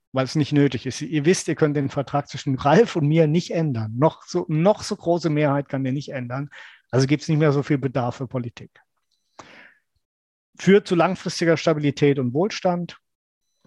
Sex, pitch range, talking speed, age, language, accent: male, 135-175 Hz, 185 wpm, 50-69, German, German